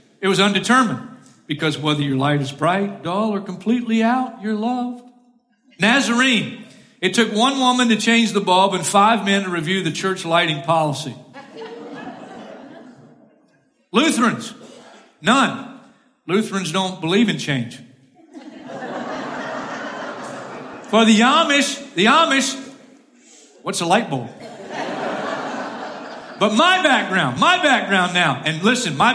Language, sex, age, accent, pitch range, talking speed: English, male, 40-59, American, 180-245 Hz, 120 wpm